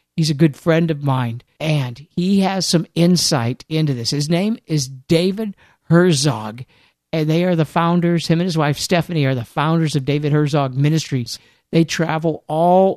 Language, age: English, 50-69